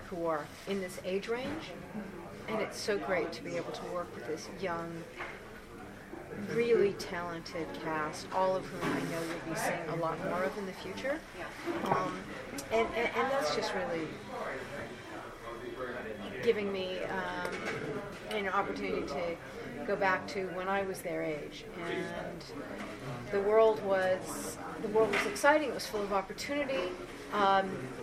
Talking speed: 150 wpm